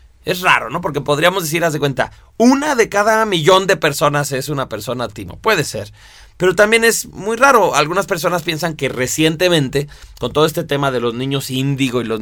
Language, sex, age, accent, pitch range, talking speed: Spanish, male, 30-49, Mexican, 130-170 Hz, 200 wpm